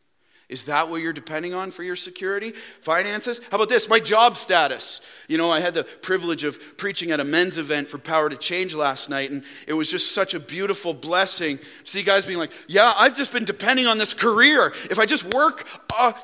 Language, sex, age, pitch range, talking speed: English, male, 40-59, 145-240 Hz, 220 wpm